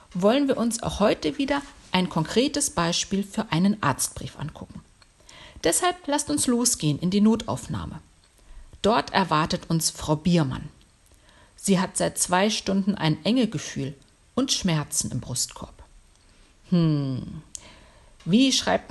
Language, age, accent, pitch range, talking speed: German, 50-69, German, 165-235 Hz, 125 wpm